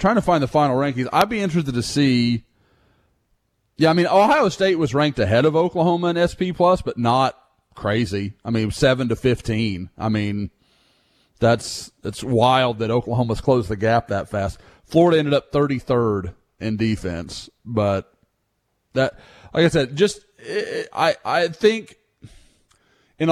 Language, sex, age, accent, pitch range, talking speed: English, male, 30-49, American, 115-160 Hz, 160 wpm